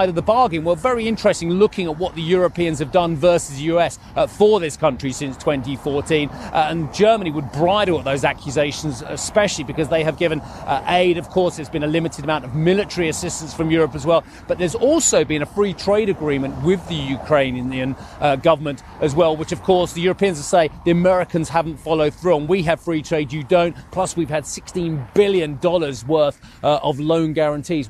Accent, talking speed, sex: British, 200 wpm, male